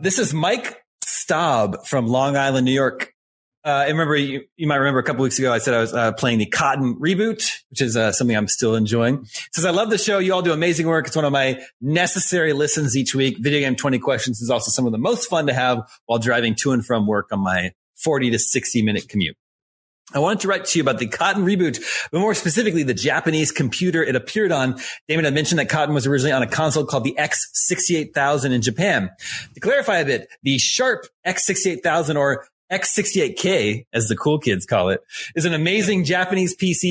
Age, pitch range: 30-49, 125-170 Hz